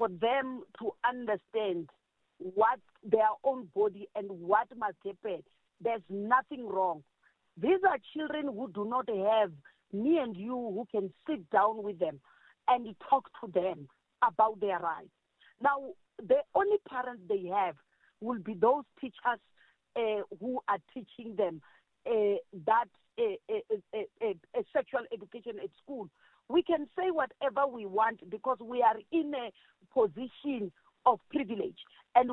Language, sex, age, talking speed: English, female, 50-69, 145 wpm